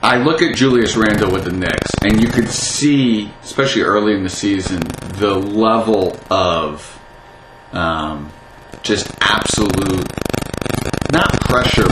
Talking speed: 125 wpm